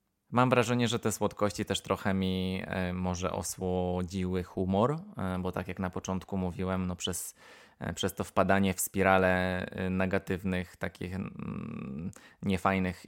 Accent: native